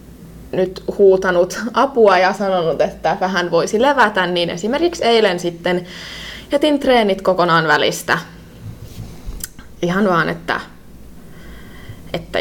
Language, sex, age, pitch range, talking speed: Finnish, female, 20-39, 175-230 Hz, 100 wpm